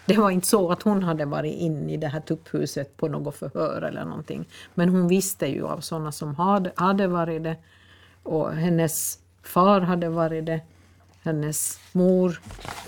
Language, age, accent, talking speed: Swedish, 50-69, native, 170 wpm